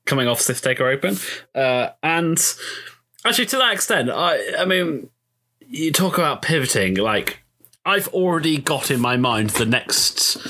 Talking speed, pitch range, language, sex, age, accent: 155 wpm, 110-150 Hz, English, male, 20-39, British